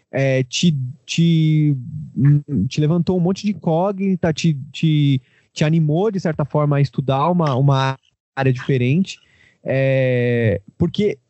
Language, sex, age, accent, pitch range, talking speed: Portuguese, male, 20-39, Brazilian, 125-170 Hz, 125 wpm